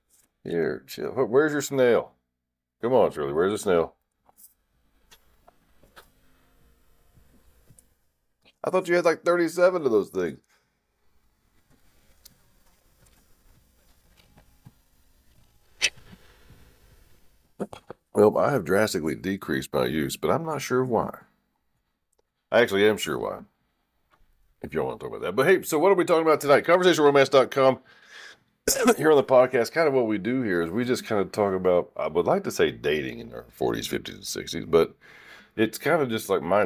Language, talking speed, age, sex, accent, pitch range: English, 145 wpm, 50-69, male, American, 85-140 Hz